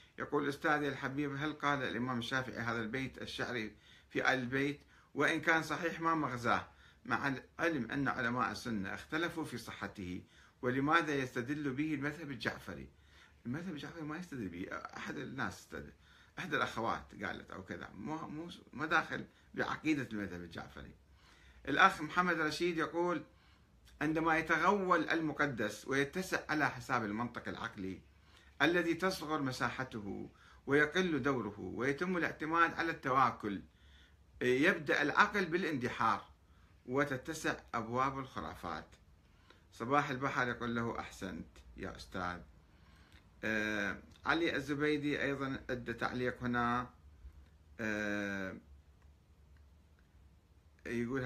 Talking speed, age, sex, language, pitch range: 105 wpm, 60-79, male, Arabic, 95-145 Hz